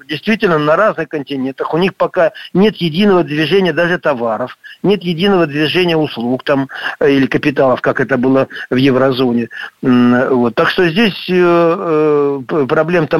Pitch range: 140-185 Hz